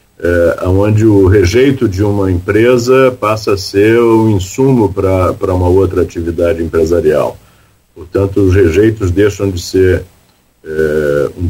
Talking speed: 135 wpm